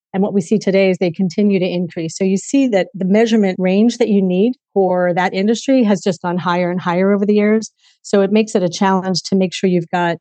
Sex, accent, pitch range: female, American, 180-215 Hz